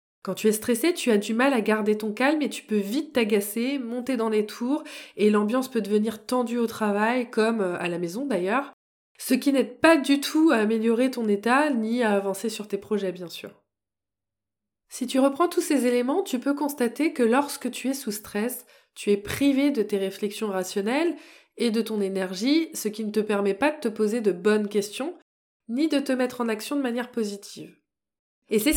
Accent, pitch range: French, 210-270 Hz